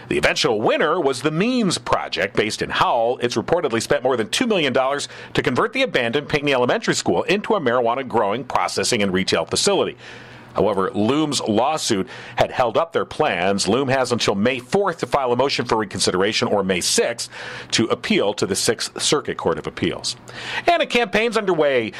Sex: male